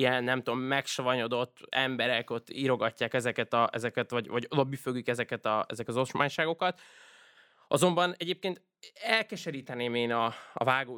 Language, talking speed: Hungarian, 130 wpm